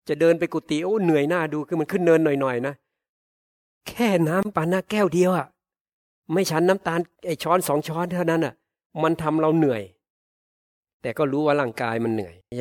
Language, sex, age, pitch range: Thai, male, 60-79, 125-155 Hz